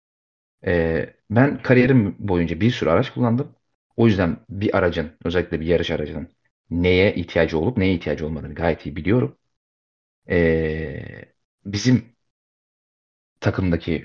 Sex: male